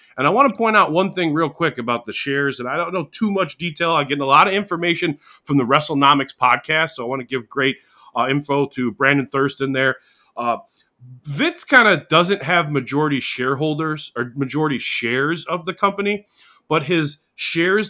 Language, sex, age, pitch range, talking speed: English, male, 30-49, 135-185 Hz, 200 wpm